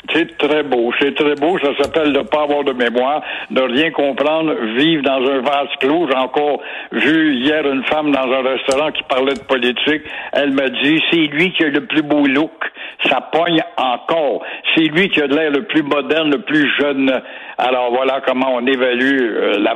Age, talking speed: 60-79, 205 wpm